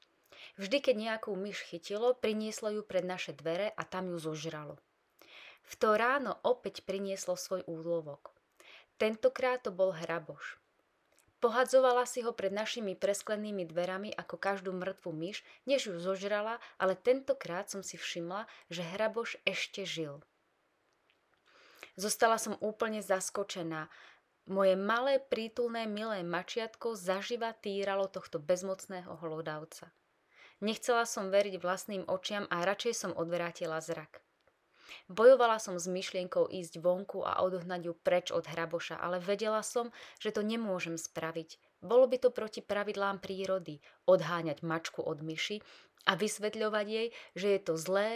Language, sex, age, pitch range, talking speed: Slovak, female, 20-39, 175-220 Hz, 135 wpm